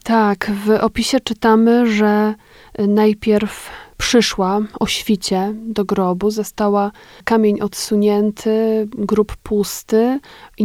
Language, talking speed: Polish, 95 wpm